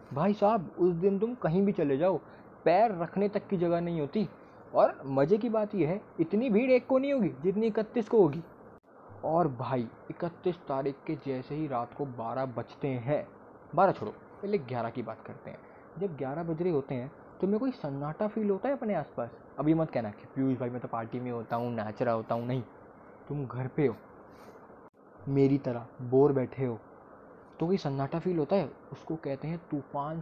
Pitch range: 130-210 Hz